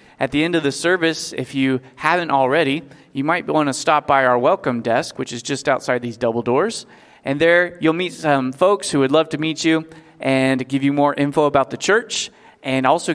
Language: English